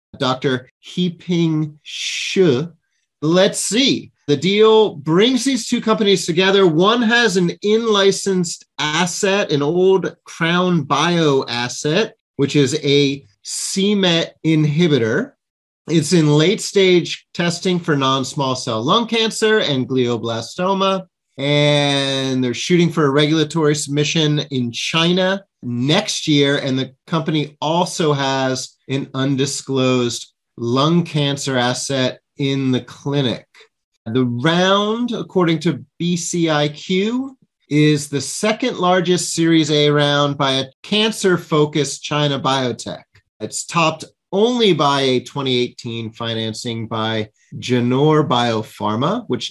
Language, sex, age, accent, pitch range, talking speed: English, male, 30-49, American, 130-185 Hz, 110 wpm